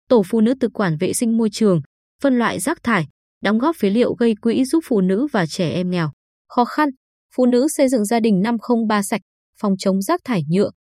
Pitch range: 195-250 Hz